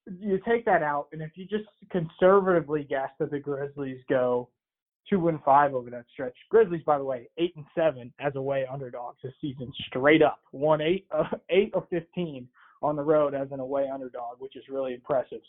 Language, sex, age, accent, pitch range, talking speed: English, male, 20-39, American, 135-170 Hz, 200 wpm